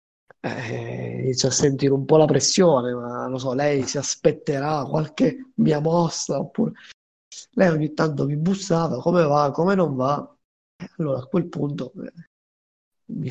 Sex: male